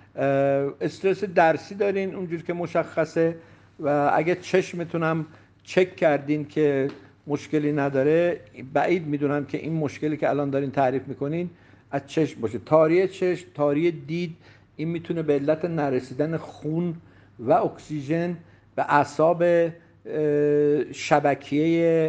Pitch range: 145-165 Hz